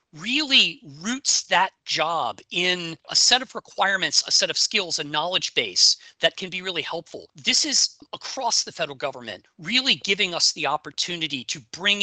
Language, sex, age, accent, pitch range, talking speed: English, male, 40-59, American, 155-205 Hz, 170 wpm